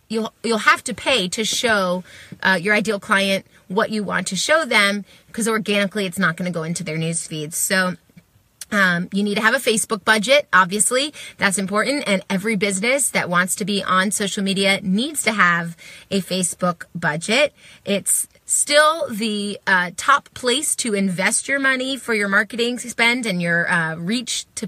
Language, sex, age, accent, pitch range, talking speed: English, female, 30-49, American, 185-235 Hz, 180 wpm